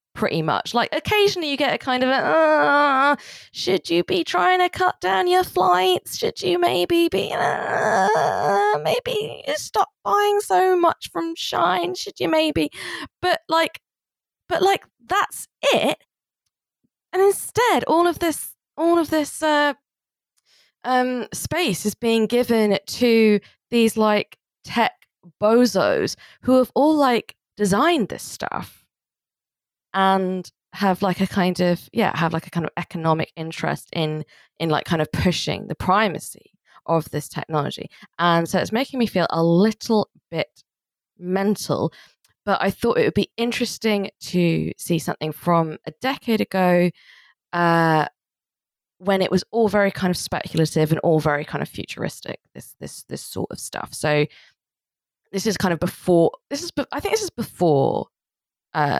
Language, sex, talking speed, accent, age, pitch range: English, female, 155 wpm, British, 20-39, 175-290 Hz